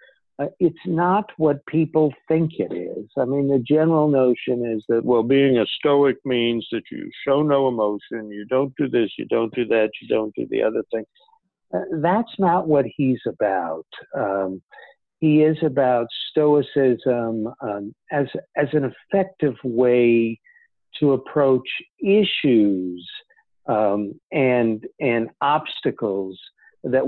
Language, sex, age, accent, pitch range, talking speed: English, male, 60-79, American, 110-150 Hz, 140 wpm